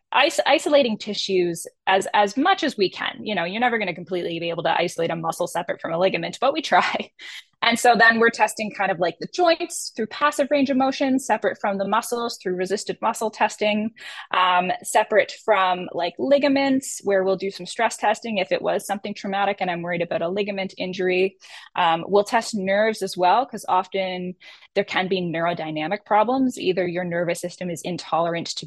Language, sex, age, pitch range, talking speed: English, female, 10-29, 175-225 Hz, 195 wpm